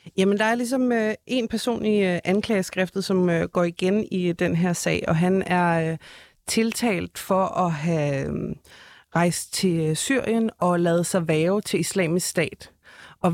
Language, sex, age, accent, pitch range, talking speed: Danish, female, 30-49, native, 160-190 Hz, 150 wpm